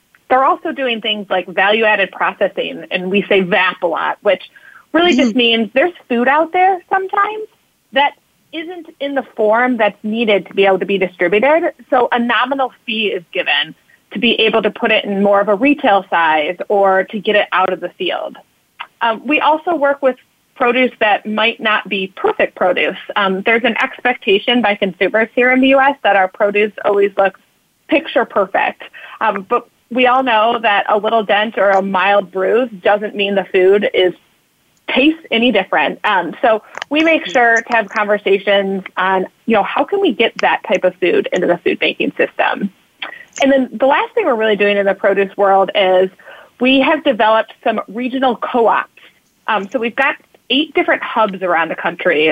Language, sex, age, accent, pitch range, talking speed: English, female, 30-49, American, 200-270 Hz, 190 wpm